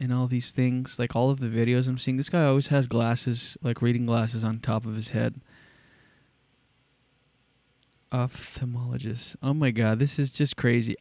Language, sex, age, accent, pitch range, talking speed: English, male, 20-39, American, 125-145 Hz, 175 wpm